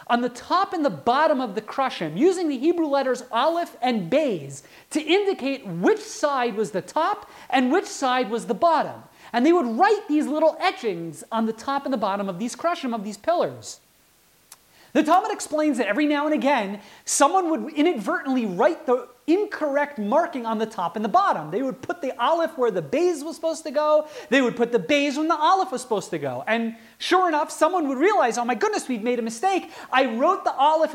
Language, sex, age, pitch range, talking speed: English, male, 30-49, 225-325 Hz, 215 wpm